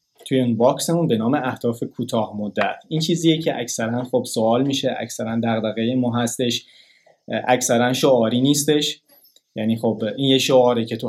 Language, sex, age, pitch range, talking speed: Persian, male, 20-39, 115-140 Hz, 150 wpm